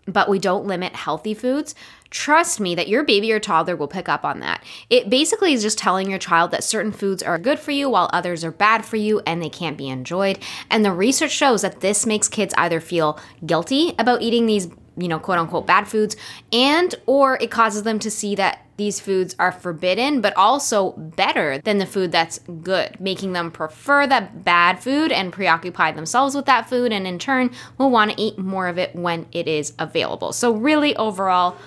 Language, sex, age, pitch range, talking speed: English, female, 10-29, 175-225 Hz, 210 wpm